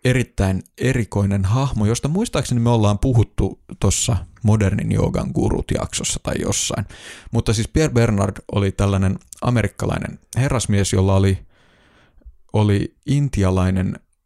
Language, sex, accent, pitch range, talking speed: Finnish, male, native, 95-115 Hz, 115 wpm